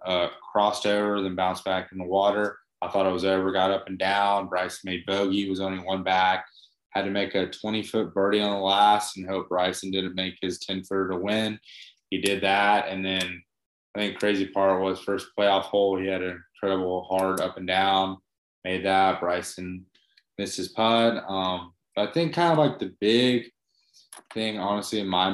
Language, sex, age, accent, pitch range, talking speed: English, male, 20-39, American, 95-105 Hz, 195 wpm